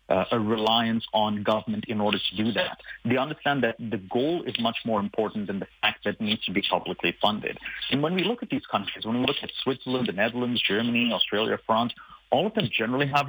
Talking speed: 230 wpm